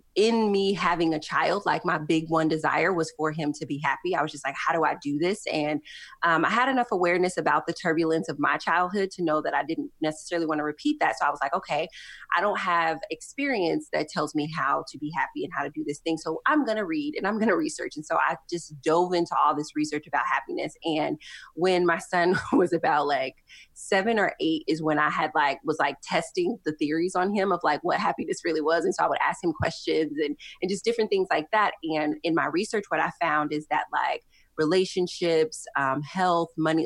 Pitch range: 155-195 Hz